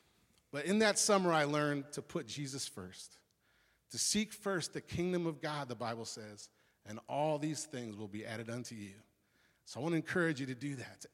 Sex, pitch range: male, 125-155 Hz